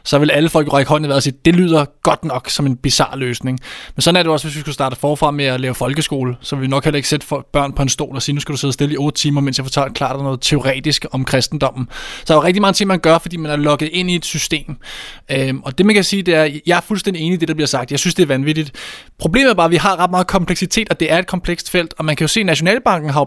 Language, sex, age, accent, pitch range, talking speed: Danish, male, 20-39, native, 145-185 Hz, 315 wpm